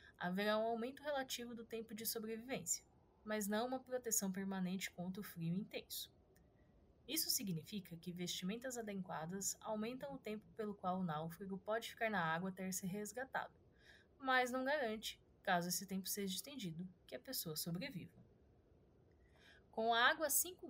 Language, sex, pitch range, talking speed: Portuguese, female, 185-235 Hz, 155 wpm